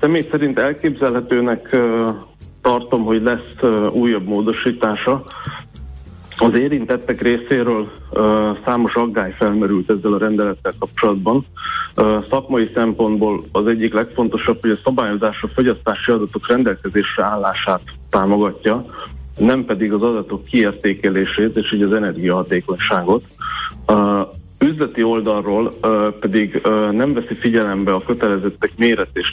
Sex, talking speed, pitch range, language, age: male, 115 wpm, 100-115 Hz, Hungarian, 30-49